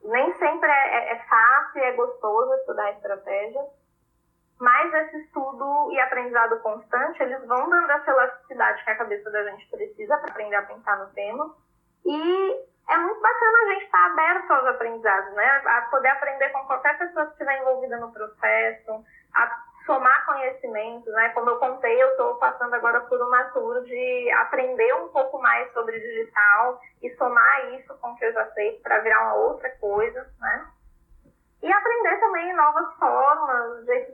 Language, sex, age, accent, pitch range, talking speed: Portuguese, female, 10-29, Brazilian, 245-325 Hz, 175 wpm